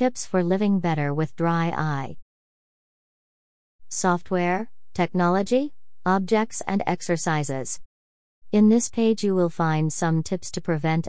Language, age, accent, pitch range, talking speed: English, 40-59, American, 145-175 Hz, 120 wpm